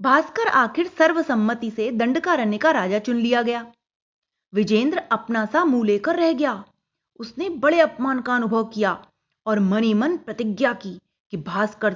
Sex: female